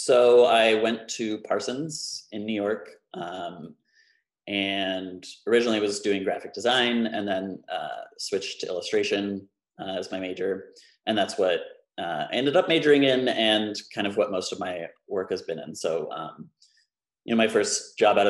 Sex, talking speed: male, 175 wpm